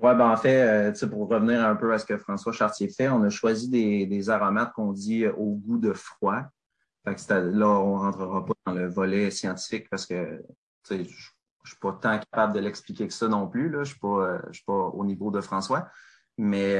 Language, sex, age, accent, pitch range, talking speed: French, male, 30-49, Canadian, 100-110 Hz, 215 wpm